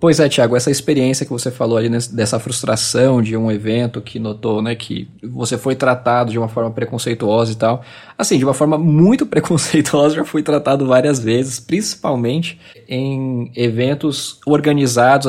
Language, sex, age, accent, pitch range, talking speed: Portuguese, male, 20-39, Brazilian, 120-155 Hz, 170 wpm